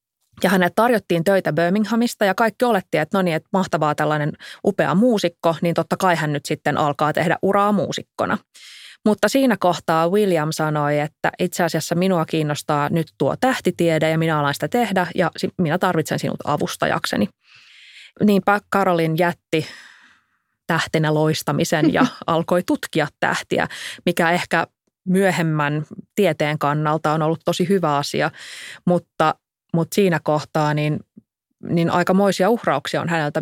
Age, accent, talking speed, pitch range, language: 20-39, native, 140 wpm, 150-195 Hz, Finnish